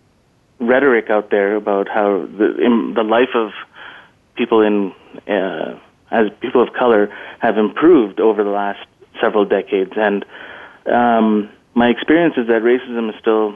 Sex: male